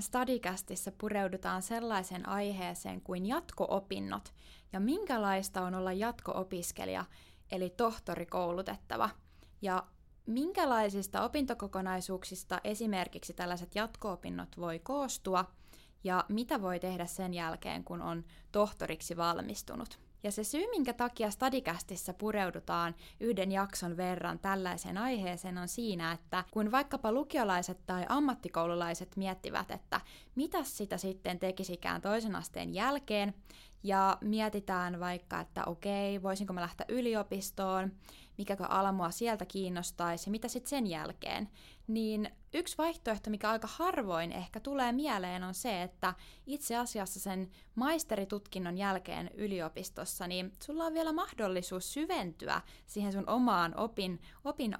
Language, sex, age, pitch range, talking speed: Finnish, female, 20-39, 180-230 Hz, 115 wpm